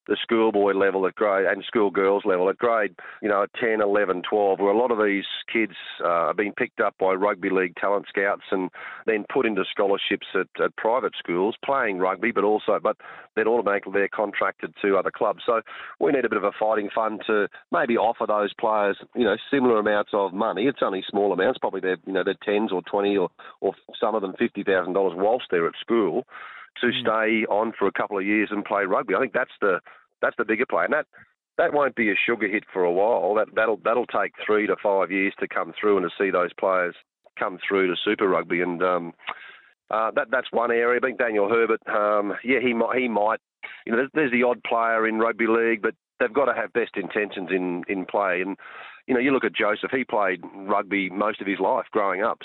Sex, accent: male, Australian